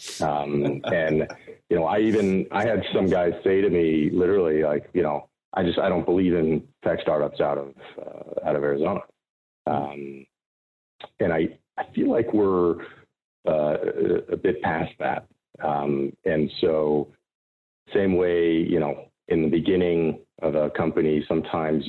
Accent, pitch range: American, 70-85 Hz